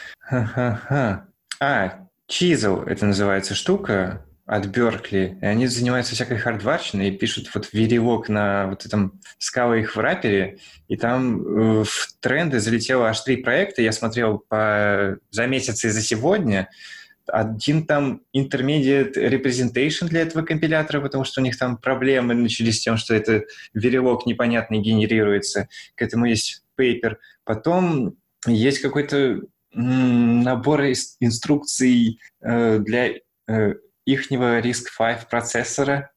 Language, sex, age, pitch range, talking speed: Russian, male, 20-39, 110-135 Hz, 120 wpm